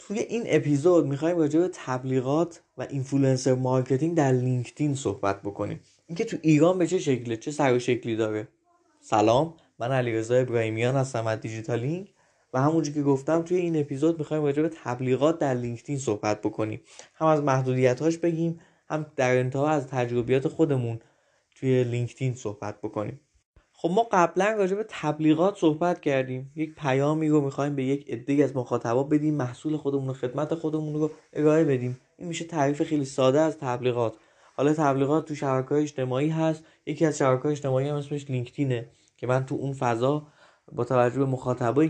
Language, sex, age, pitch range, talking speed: Persian, male, 20-39, 125-155 Hz, 170 wpm